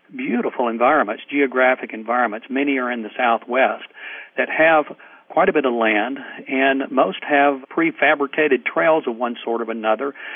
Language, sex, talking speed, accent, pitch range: English, male, 150 wpm, American, 125-145 Hz